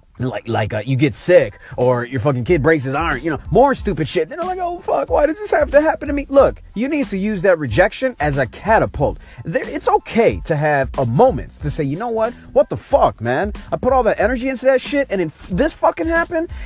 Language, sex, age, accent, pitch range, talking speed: English, male, 30-49, American, 130-215 Hz, 255 wpm